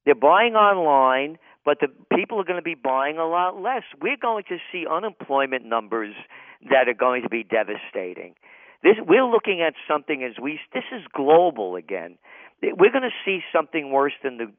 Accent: American